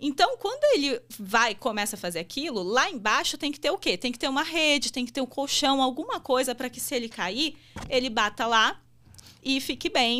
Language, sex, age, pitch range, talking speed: Portuguese, female, 20-39, 205-265 Hz, 230 wpm